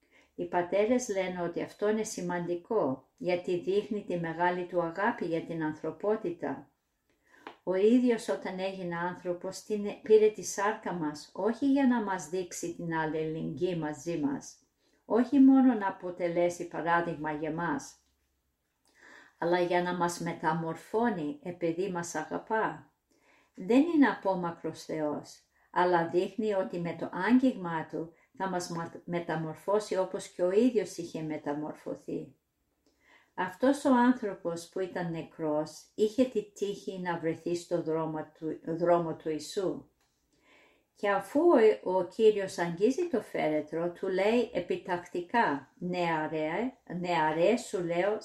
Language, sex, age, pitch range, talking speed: Greek, female, 50-69, 165-215 Hz, 125 wpm